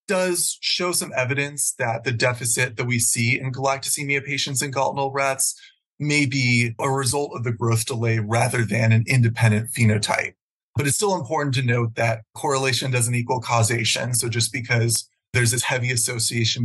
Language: English